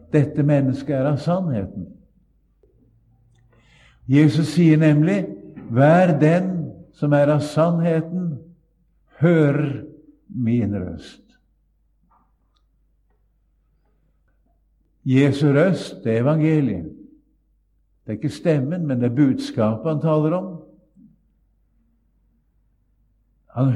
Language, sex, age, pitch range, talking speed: English, male, 60-79, 110-155 Hz, 90 wpm